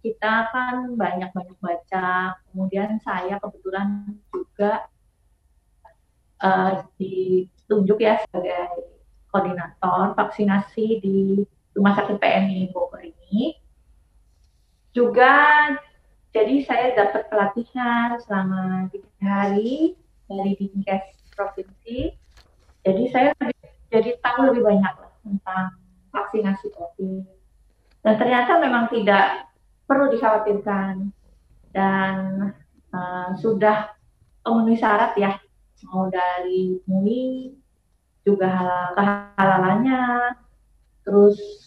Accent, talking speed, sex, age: native, 80 wpm, female, 30-49